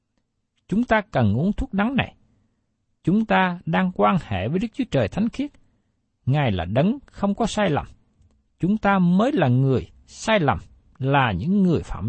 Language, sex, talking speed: Vietnamese, male, 180 wpm